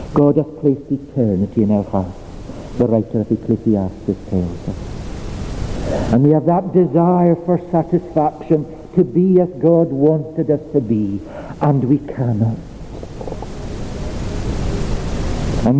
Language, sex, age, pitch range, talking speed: English, male, 60-79, 100-155 Hz, 120 wpm